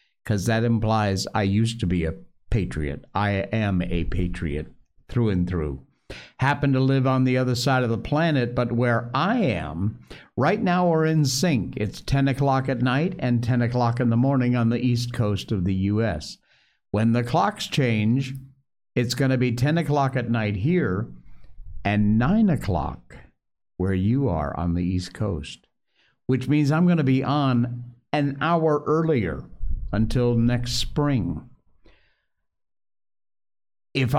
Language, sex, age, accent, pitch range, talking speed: English, male, 60-79, American, 110-145 Hz, 160 wpm